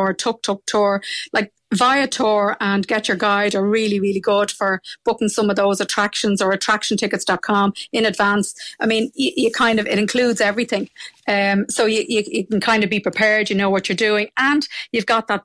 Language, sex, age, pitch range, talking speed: English, female, 30-49, 205-235 Hz, 205 wpm